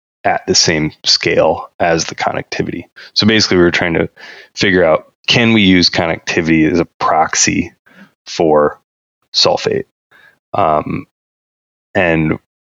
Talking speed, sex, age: 125 wpm, male, 20-39